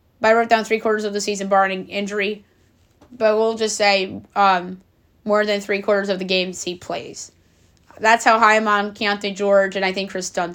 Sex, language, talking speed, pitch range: female, English, 195 wpm, 195-225 Hz